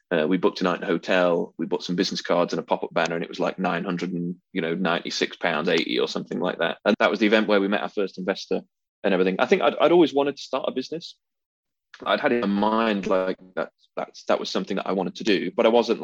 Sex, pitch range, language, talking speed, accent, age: male, 90-110 Hz, English, 290 wpm, British, 20-39